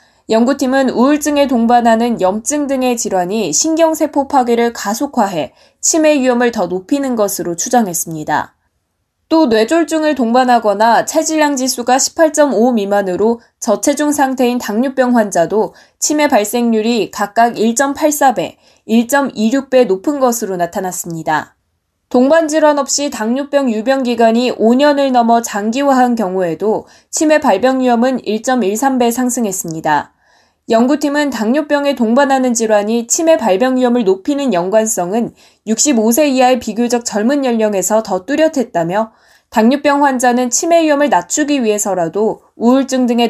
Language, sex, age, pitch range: Korean, female, 20-39, 215-280 Hz